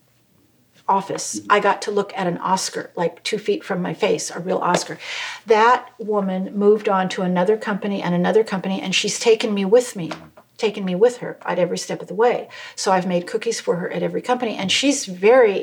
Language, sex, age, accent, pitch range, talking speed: English, female, 50-69, American, 185-250 Hz, 210 wpm